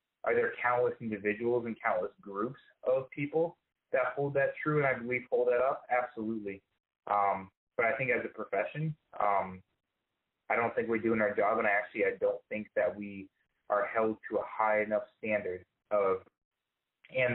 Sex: male